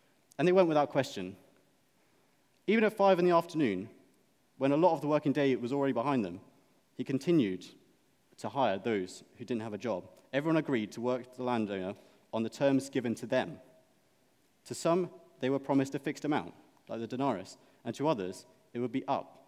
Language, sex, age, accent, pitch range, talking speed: English, male, 30-49, British, 115-145 Hz, 195 wpm